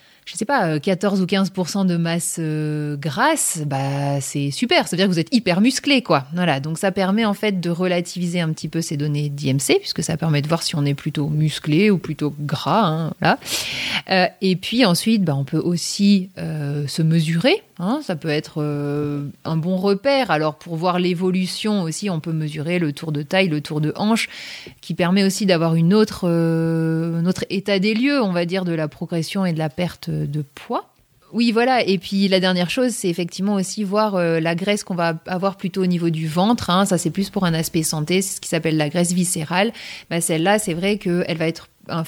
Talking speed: 220 wpm